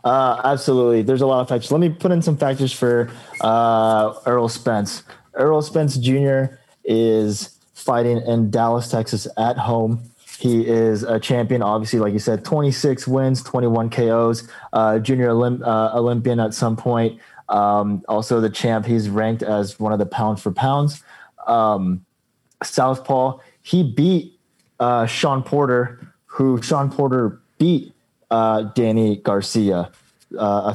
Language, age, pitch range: English, 20-39, 110-130 Hz